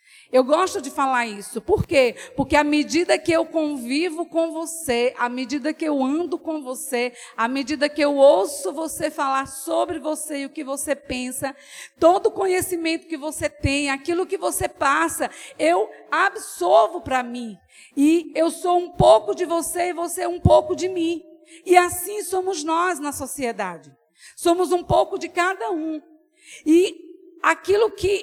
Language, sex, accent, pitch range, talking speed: Portuguese, female, Brazilian, 275-350 Hz, 170 wpm